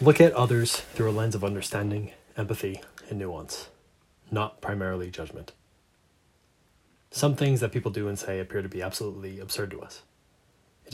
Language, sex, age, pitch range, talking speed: English, male, 20-39, 95-120 Hz, 160 wpm